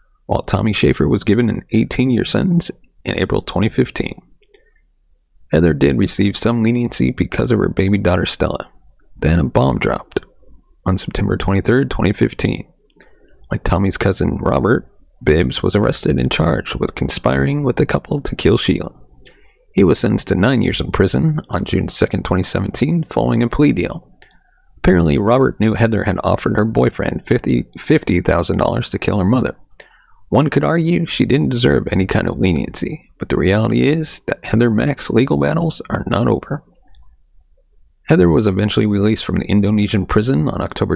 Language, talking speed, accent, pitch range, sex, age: English, 160 wpm, American, 90-120 Hz, male, 30-49